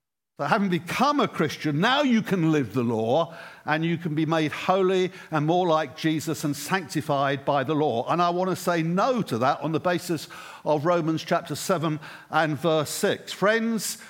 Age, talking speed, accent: 60-79, 185 wpm, British